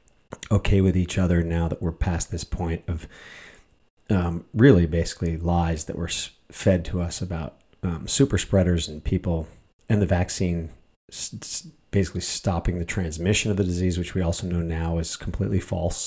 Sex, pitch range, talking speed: male, 85-95 Hz, 165 wpm